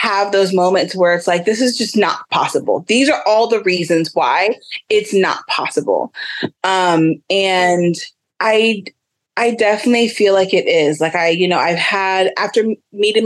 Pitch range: 170-215 Hz